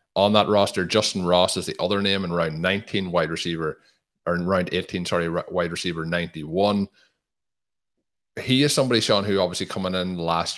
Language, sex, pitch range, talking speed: English, male, 85-95 Hz, 175 wpm